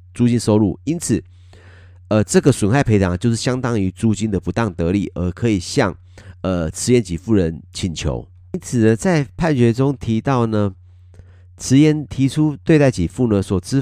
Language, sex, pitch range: Chinese, male, 90-125 Hz